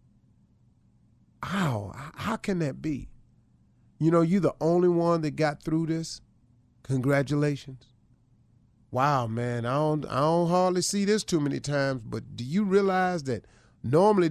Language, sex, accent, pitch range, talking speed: English, male, American, 120-180 Hz, 145 wpm